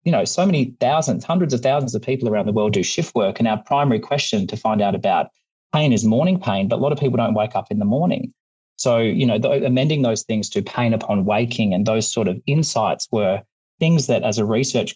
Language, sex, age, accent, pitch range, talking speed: English, male, 30-49, Australian, 105-130 Hz, 240 wpm